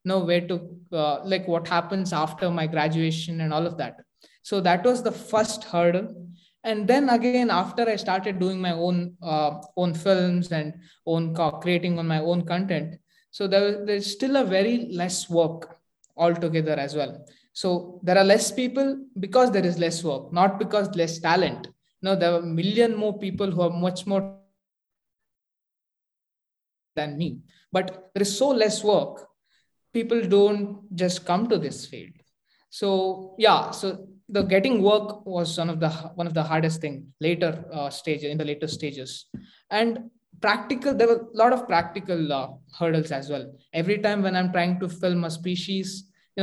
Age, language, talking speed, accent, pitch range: 20-39, English, 175 wpm, Indian, 165-200 Hz